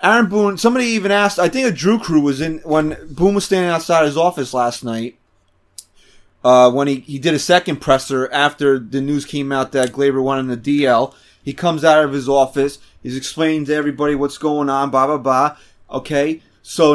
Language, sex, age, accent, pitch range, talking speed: English, male, 30-49, American, 140-180 Hz, 205 wpm